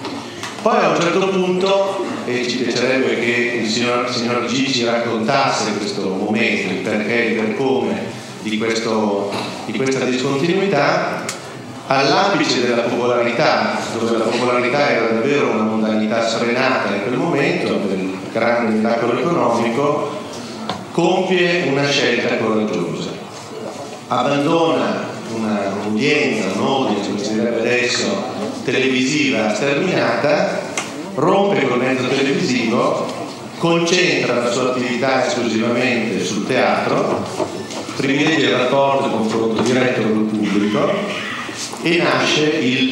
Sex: male